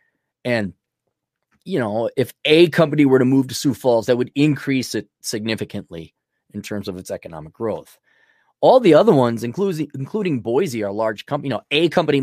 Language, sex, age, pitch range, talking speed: English, male, 20-39, 105-140 Hz, 180 wpm